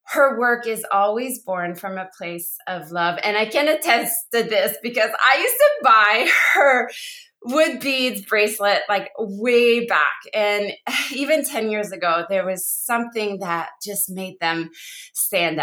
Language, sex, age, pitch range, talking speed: English, female, 20-39, 195-250 Hz, 155 wpm